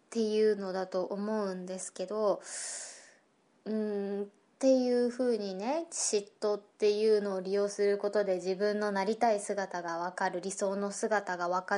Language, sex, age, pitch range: Japanese, female, 20-39, 195-230 Hz